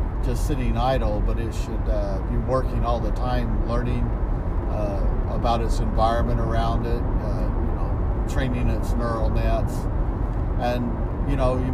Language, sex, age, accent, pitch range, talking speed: English, male, 50-69, American, 90-115 Hz, 155 wpm